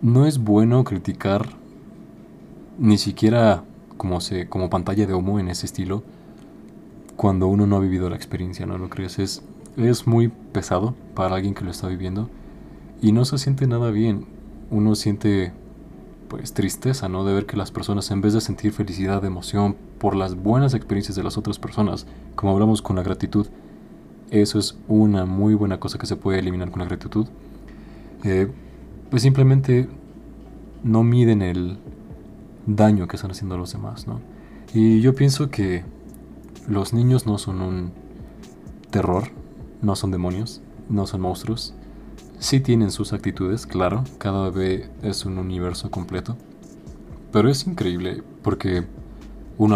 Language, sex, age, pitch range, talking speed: Spanish, male, 20-39, 95-110 Hz, 155 wpm